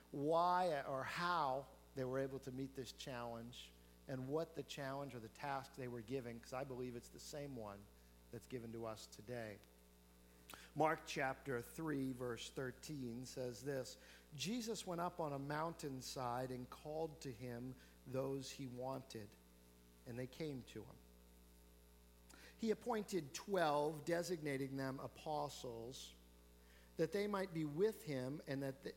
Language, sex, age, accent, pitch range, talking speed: English, male, 50-69, American, 110-150 Hz, 150 wpm